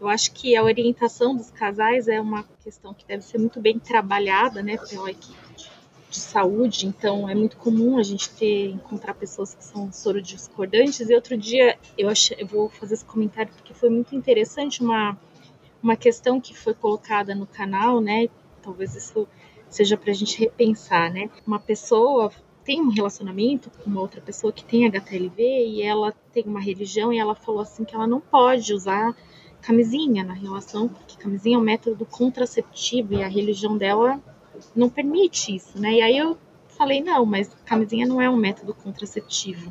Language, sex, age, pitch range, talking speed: Portuguese, female, 20-39, 200-240 Hz, 180 wpm